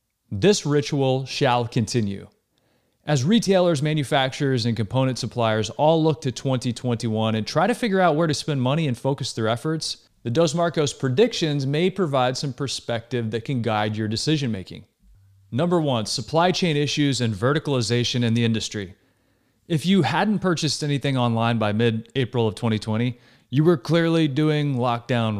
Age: 30-49